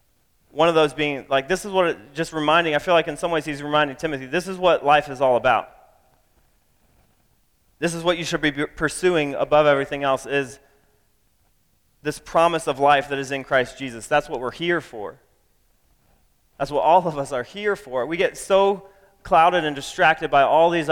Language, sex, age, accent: English, male, 30-49, American